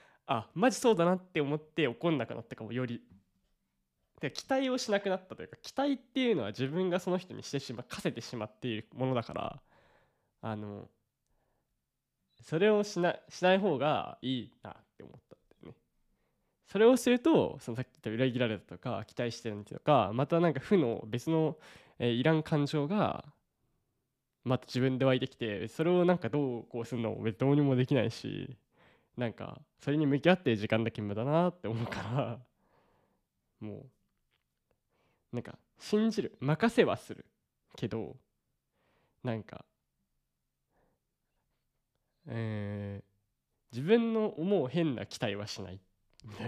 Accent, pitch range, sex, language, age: native, 110-160 Hz, male, Japanese, 20-39